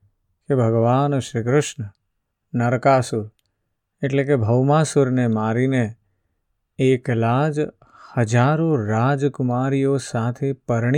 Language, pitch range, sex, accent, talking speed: Gujarati, 100-140 Hz, male, native, 65 wpm